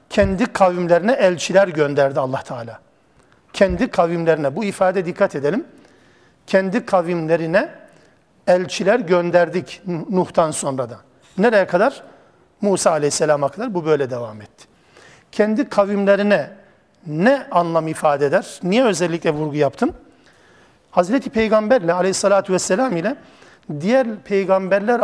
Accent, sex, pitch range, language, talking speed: native, male, 160-220 Hz, Turkish, 110 wpm